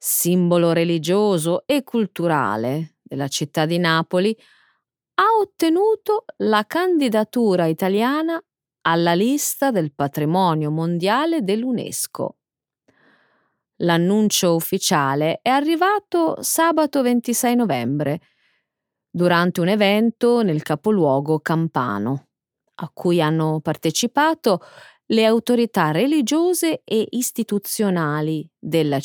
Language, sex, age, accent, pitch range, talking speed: Italian, female, 30-49, native, 160-270 Hz, 85 wpm